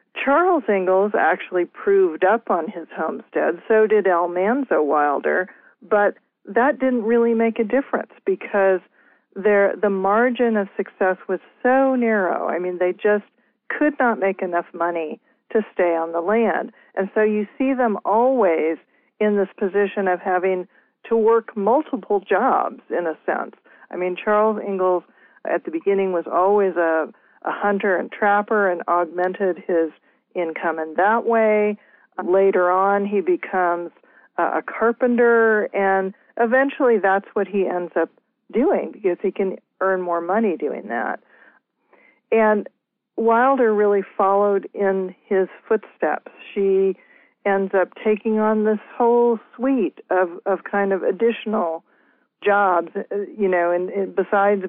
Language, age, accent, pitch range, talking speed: English, 50-69, American, 185-225 Hz, 140 wpm